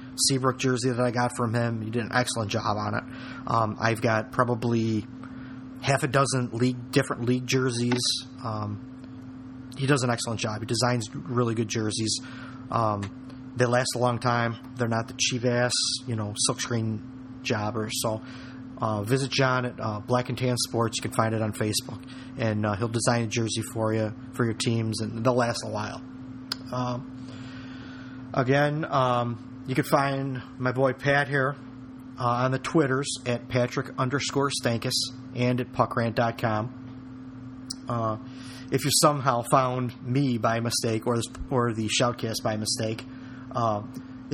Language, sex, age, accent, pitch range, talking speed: English, male, 30-49, American, 115-130 Hz, 165 wpm